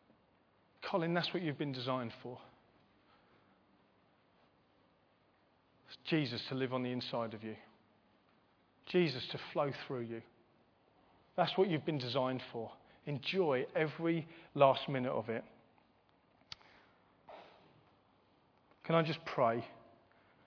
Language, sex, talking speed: English, male, 105 wpm